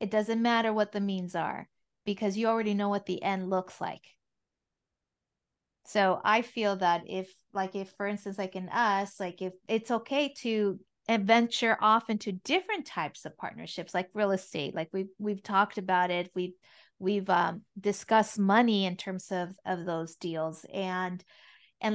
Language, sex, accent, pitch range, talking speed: English, female, American, 185-220 Hz, 170 wpm